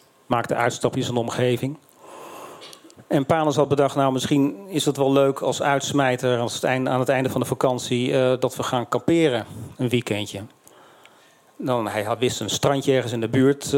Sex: male